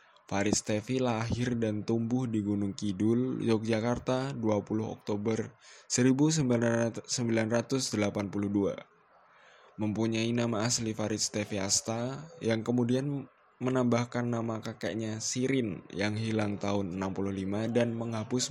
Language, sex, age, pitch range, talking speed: Indonesian, male, 20-39, 105-120 Hz, 95 wpm